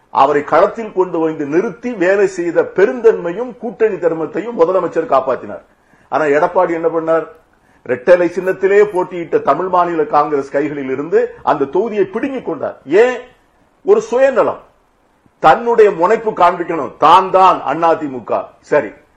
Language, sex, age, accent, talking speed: Tamil, male, 50-69, native, 115 wpm